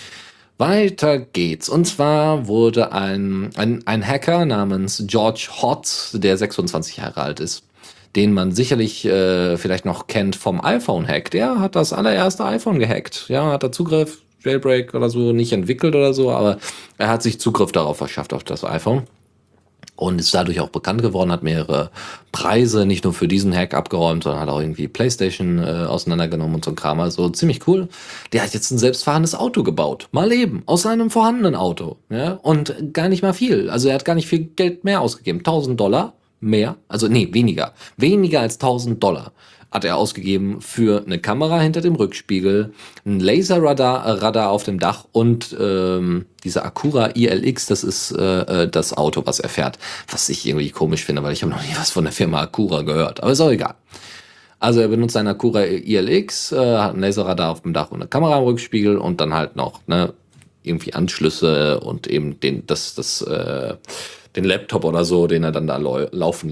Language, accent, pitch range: German, German, 95-140 Hz